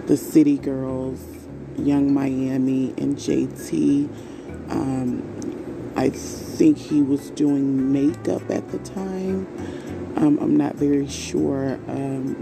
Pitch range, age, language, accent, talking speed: 135-155 Hz, 30-49, English, American, 110 wpm